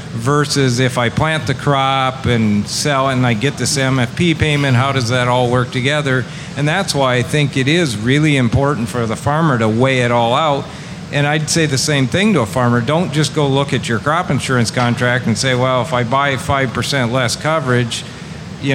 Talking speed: 210 wpm